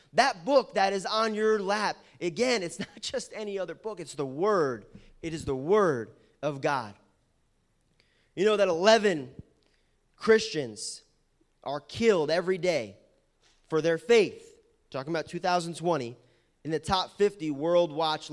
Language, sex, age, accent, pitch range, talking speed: English, male, 20-39, American, 145-210 Hz, 145 wpm